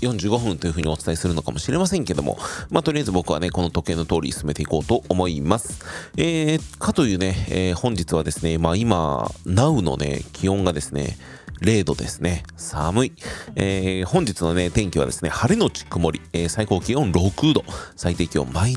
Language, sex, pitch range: Japanese, male, 85-125 Hz